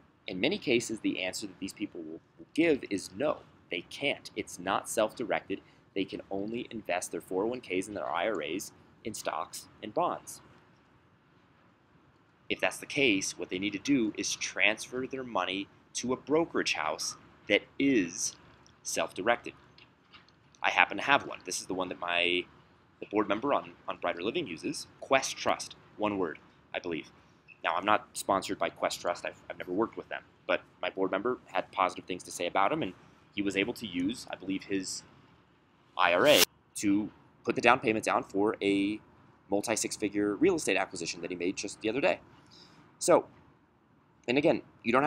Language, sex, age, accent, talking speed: English, male, 30-49, American, 180 wpm